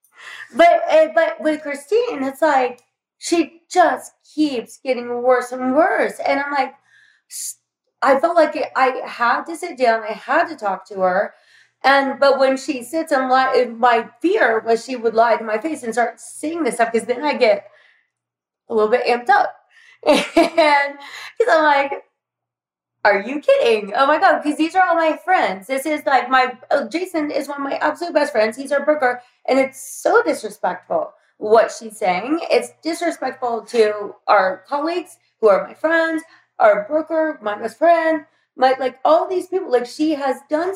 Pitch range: 240-315 Hz